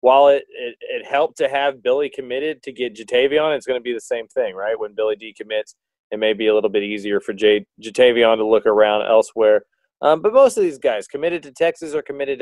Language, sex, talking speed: English, male, 235 wpm